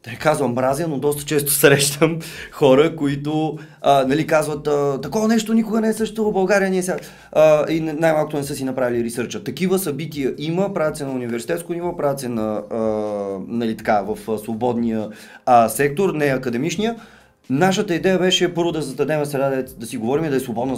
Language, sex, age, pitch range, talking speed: Bulgarian, male, 30-49, 130-170 Hz, 180 wpm